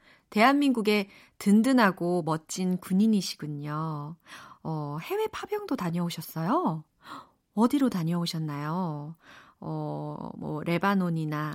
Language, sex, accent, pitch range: Korean, female, native, 165-260 Hz